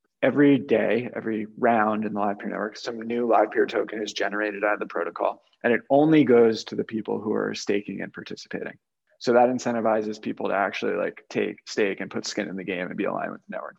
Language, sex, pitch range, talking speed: English, male, 110-130 Hz, 230 wpm